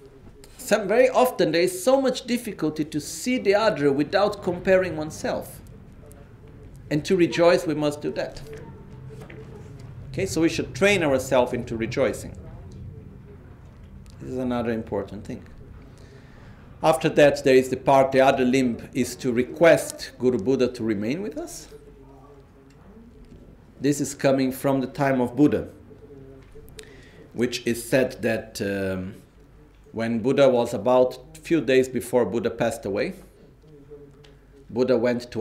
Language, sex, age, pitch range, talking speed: Italian, male, 50-69, 125-170 Hz, 135 wpm